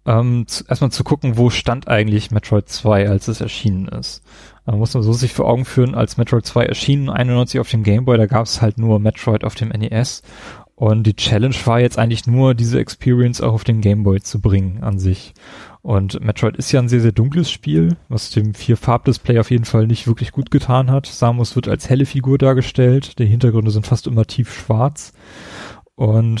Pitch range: 105-120 Hz